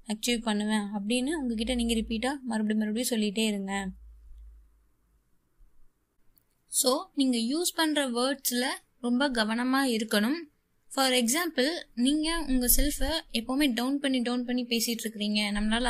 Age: 20-39